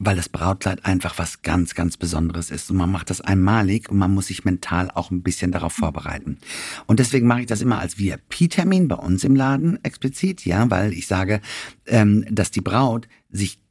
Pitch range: 95-130 Hz